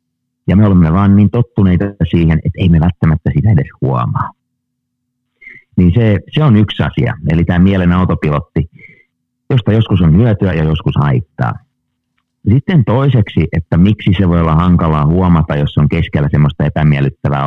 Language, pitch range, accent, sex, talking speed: Finnish, 80-110 Hz, native, male, 155 wpm